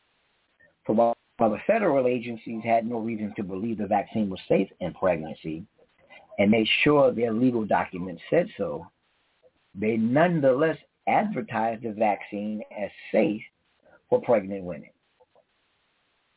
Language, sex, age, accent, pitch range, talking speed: English, male, 50-69, American, 100-130 Hz, 125 wpm